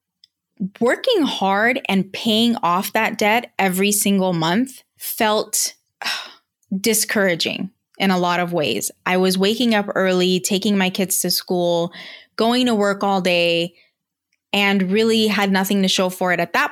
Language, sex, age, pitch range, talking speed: English, female, 20-39, 180-220 Hz, 150 wpm